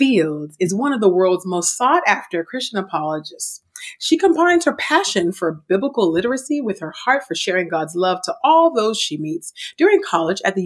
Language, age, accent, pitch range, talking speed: English, 30-49, American, 170-275 Hz, 185 wpm